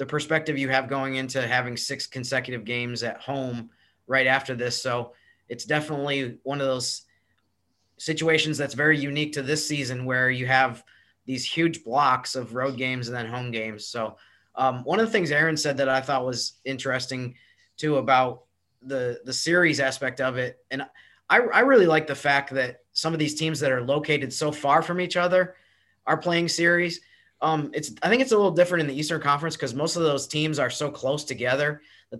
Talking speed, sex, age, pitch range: 200 wpm, male, 30-49, 125-150 Hz